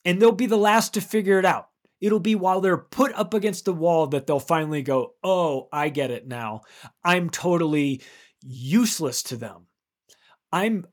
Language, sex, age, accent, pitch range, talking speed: English, male, 30-49, American, 140-215 Hz, 180 wpm